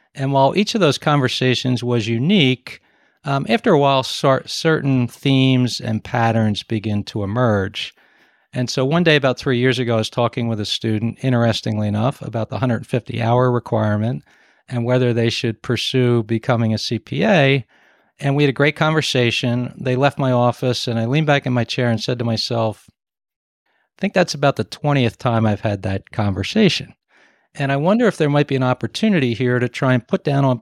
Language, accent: English, American